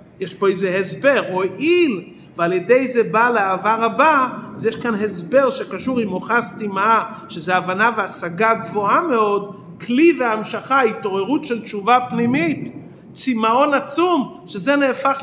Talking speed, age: 140 wpm, 40-59